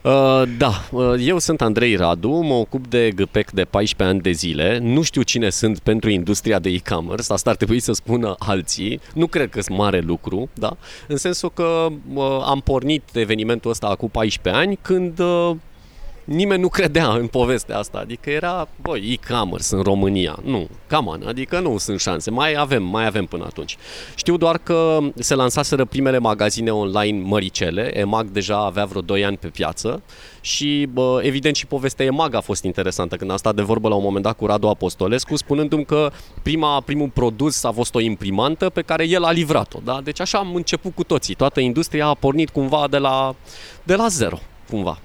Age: 30-49